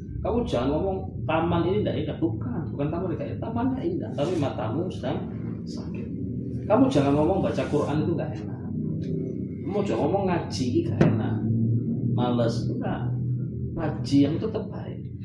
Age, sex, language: 20-39, male, Malay